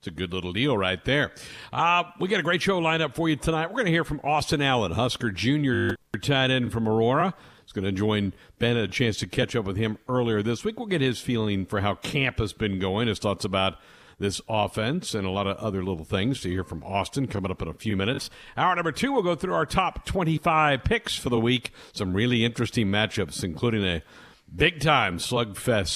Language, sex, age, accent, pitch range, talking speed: English, male, 60-79, American, 100-130 Hz, 235 wpm